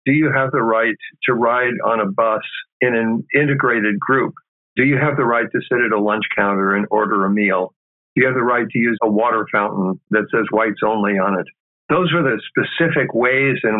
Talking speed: 220 wpm